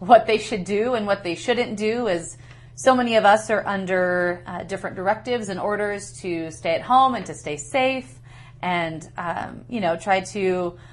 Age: 30-49